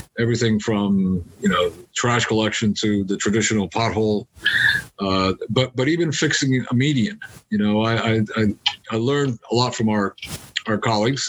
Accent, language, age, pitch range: American, English, 50-69, 105-120 Hz